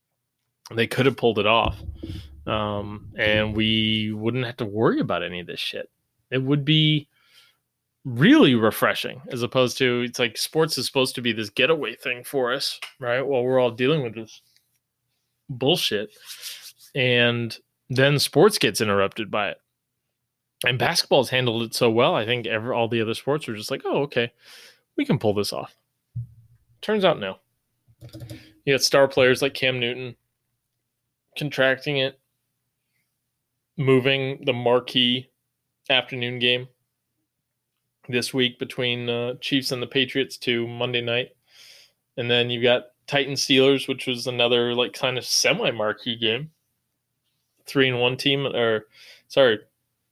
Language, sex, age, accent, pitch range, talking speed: English, male, 20-39, American, 115-135 Hz, 150 wpm